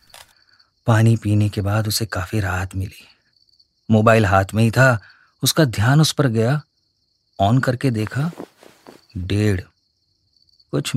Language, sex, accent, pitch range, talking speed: Hindi, male, native, 100-135 Hz, 125 wpm